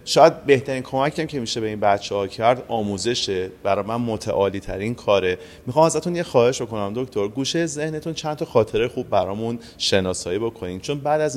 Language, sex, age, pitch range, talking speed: Persian, male, 30-49, 105-150 Hz, 180 wpm